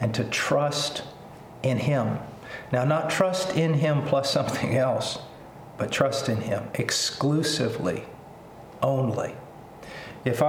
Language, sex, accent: English, male, American